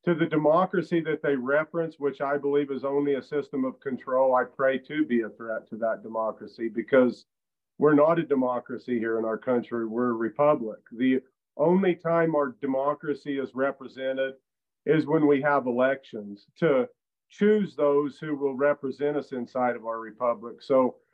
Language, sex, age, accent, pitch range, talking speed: English, male, 50-69, American, 130-150 Hz, 170 wpm